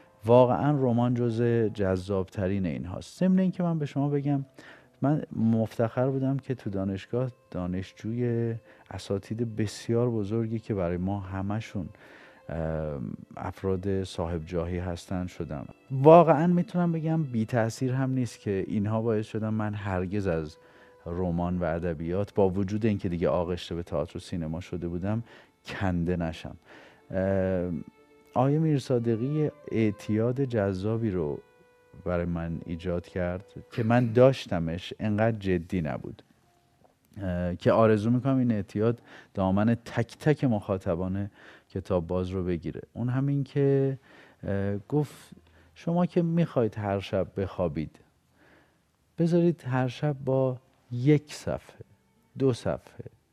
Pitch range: 90-125 Hz